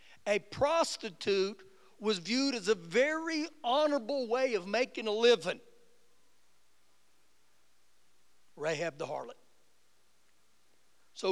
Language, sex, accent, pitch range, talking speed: English, male, American, 165-245 Hz, 90 wpm